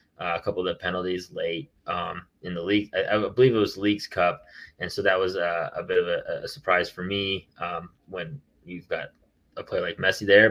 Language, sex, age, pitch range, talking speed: English, male, 20-39, 90-110 Hz, 230 wpm